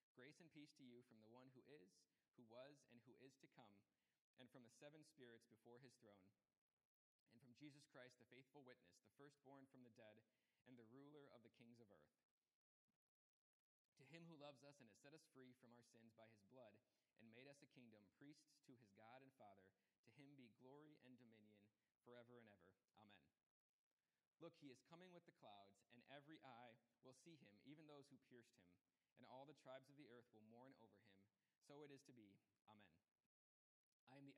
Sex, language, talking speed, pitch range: male, English, 210 wpm, 110-140 Hz